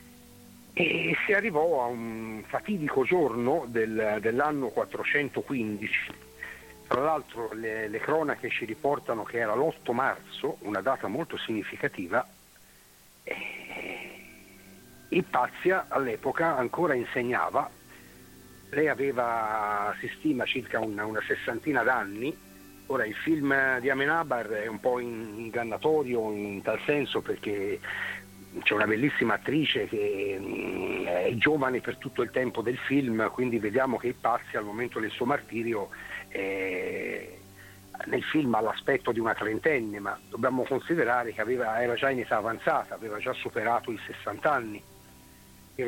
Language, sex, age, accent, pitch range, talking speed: Italian, male, 60-79, native, 105-150 Hz, 125 wpm